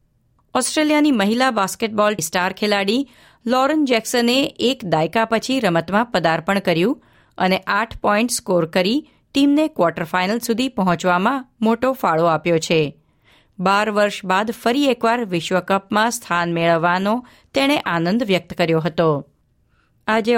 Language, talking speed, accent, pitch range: Gujarati, 115 wpm, native, 175-235 Hz